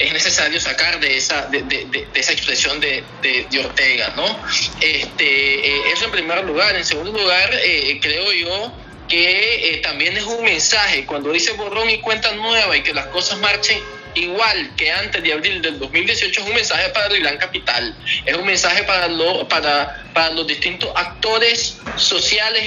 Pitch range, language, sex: 165-220 Hz, Spanish, male